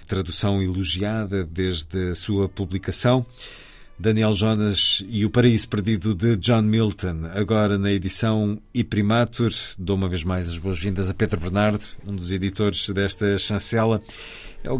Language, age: Portuguese, 50-69